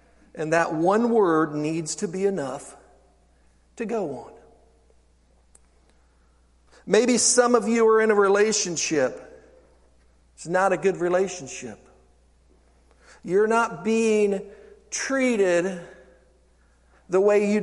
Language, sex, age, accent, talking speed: English, male, 50-69, American, 105 wpm